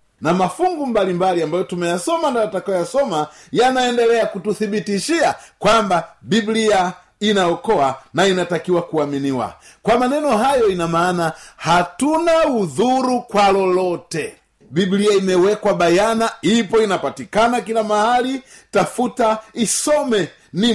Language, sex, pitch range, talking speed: Swahili, male, 185-270 Hz, 105 wpm